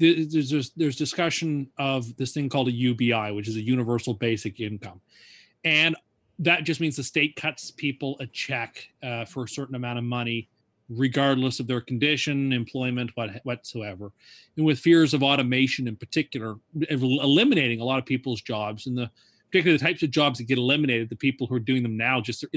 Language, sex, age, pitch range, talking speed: English, male, 30-49, 120-145 Hz, 190 wpm